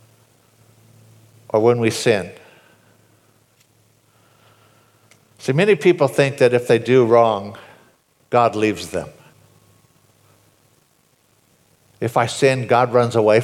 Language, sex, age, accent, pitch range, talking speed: English, male, 60-79, American, 105-130 Hz, 100 wpm